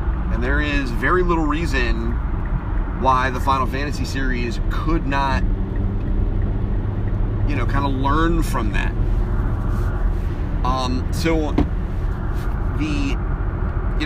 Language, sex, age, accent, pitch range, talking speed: English, male, 30-49, American, 90-120 Hz, 100 wpm